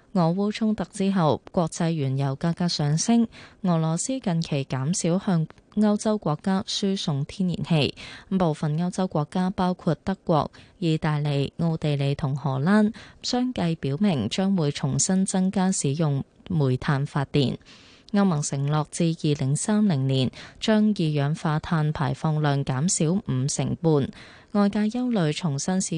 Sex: female